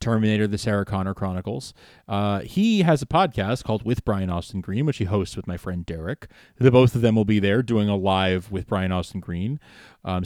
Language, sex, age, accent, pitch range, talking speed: English, male, 30-49, American, 100-125 Hz, 215 wpm